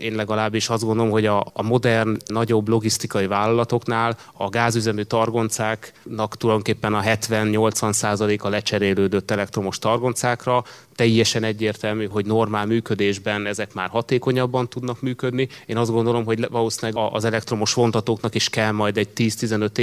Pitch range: 105-115 Hz